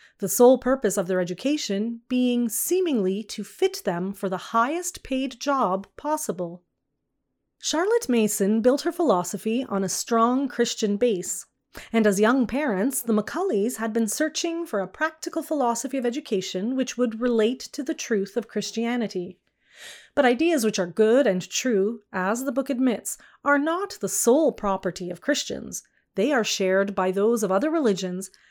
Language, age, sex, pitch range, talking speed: English, 30-49, female, 200-270 Hz, 160 wpm